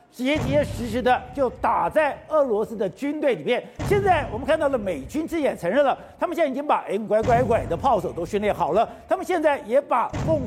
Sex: male